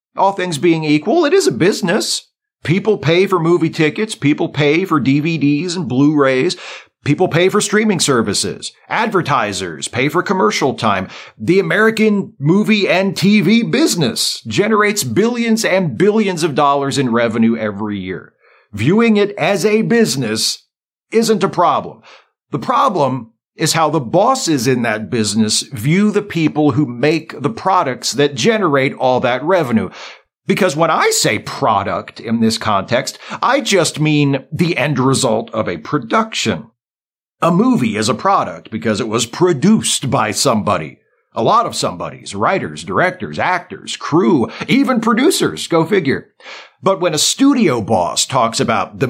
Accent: American